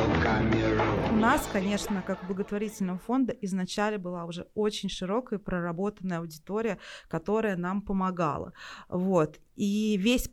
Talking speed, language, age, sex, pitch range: 110 wpm, Russian, 20-39, female, 175-215 Hz